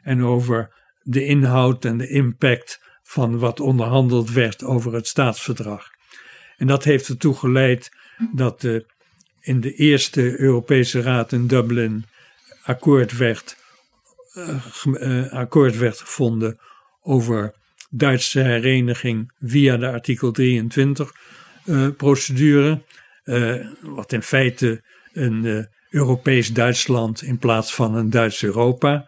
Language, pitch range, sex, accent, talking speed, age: Dutch, 120-135 Hz, male, Dutch, 105 wpm, 50-69